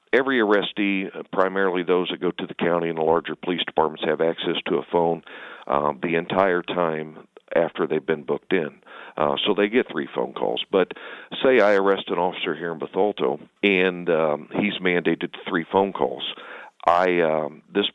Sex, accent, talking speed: male, American, 180 wpm